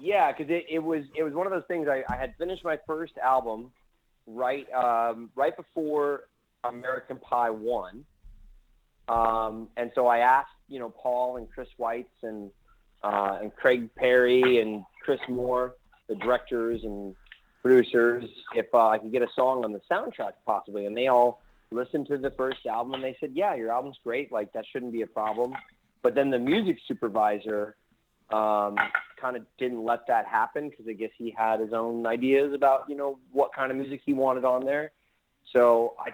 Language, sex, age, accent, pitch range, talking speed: English, male, 30-49, American, 115-135 Hz, 190 wpm